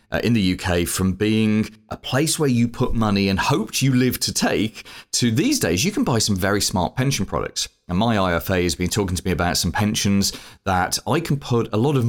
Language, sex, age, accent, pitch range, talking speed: English, male, 30-49, British, 90-120 Hz, 235 wpm